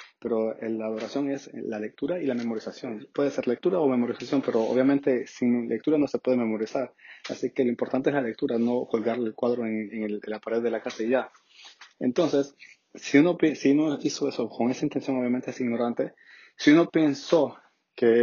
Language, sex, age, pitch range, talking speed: Spanish, male, 30-49, 120-140 Hz, 205 wpm